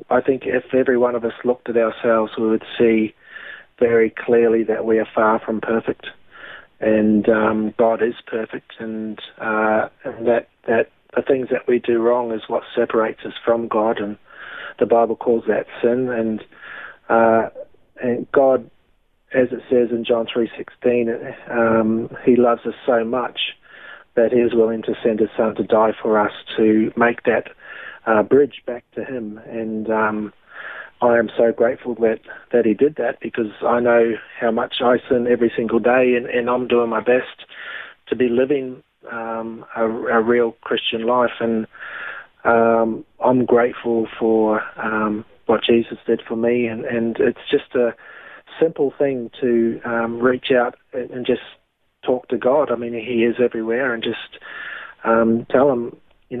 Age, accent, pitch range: 30-49, Australian, 110-120 Hz